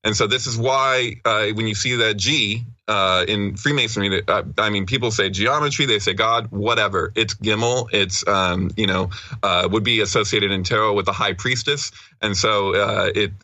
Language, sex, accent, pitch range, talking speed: English, male, American, 95-115 Hz, 190 wpm